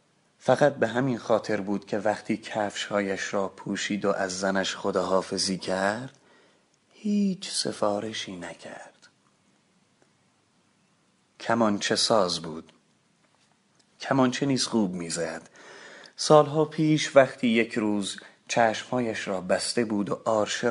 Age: 30-49